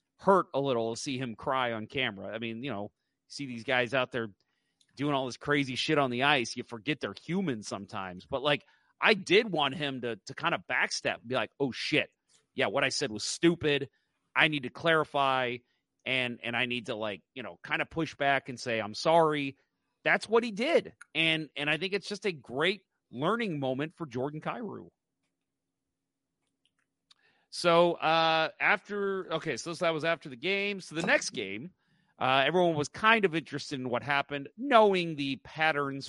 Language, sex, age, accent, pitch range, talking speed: English, male, 30-49, American, 120-165 Hz, 190 wpm